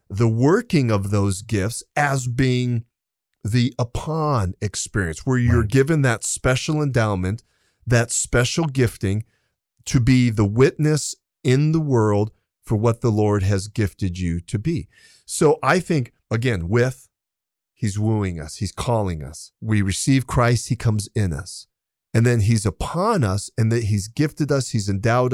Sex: male